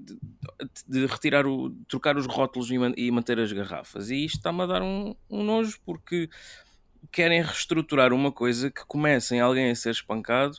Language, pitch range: English, 105-140 Hz